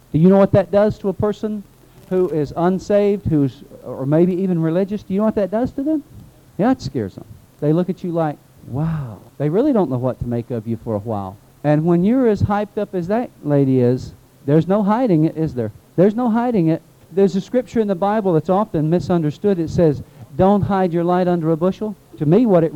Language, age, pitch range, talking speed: English, 50-69, 145-200 Hz, 235 wpm